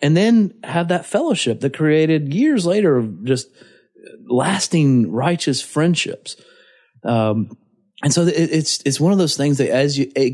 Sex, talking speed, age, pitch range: male, 165 wpm, 30-49, 115-160 Hz